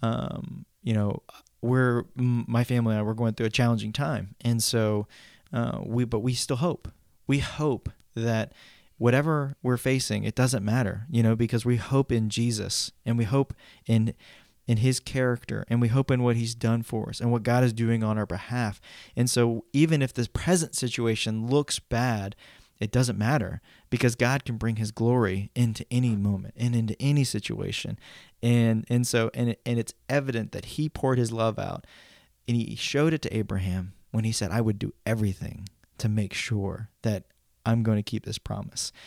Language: English